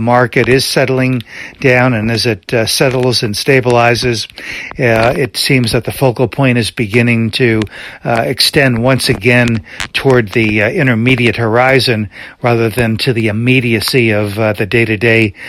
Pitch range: 115-135 Hz